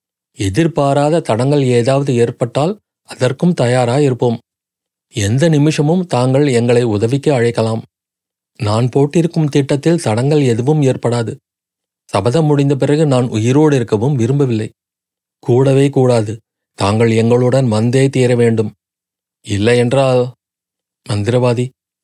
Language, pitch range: Tamil, 115-145 Hz